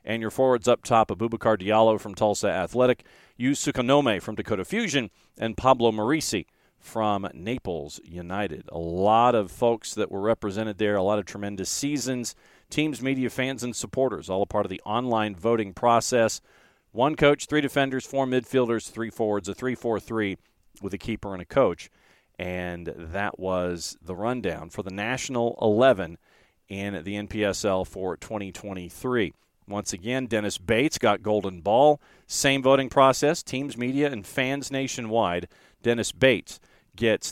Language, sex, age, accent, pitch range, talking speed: English, male, 40-59, American, 105-135 Hz, 155 wpm